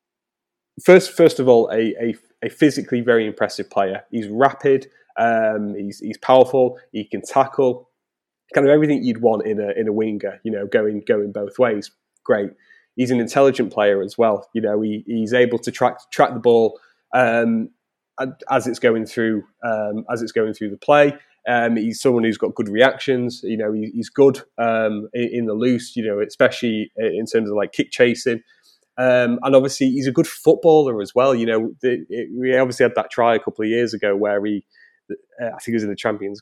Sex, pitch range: male, 110-130 Hz